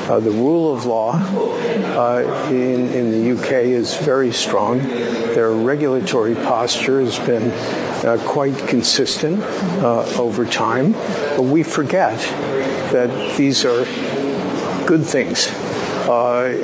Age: 50-69